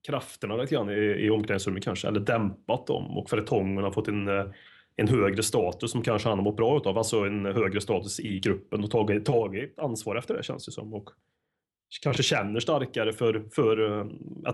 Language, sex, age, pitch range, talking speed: Swedish, male, 20-39, 105-120 Hz, 195 wpm